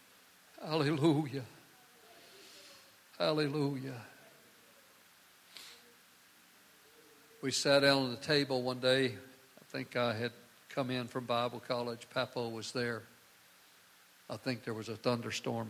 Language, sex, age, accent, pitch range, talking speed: English, male, 60-79, American, 120-145 Hz, 105 wpm